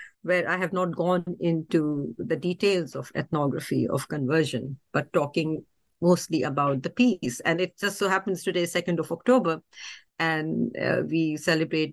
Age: 50-69